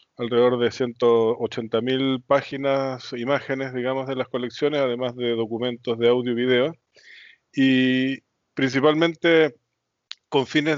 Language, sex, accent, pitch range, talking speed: Spanish, male, Argentinian, 115-135 Hz, 110 wpm